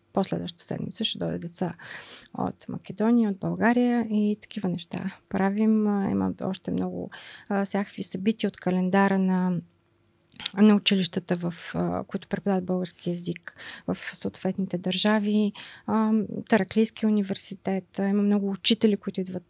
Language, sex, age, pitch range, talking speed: Bulgarian, female, 20-39, 185-210 Hz, 115 wpm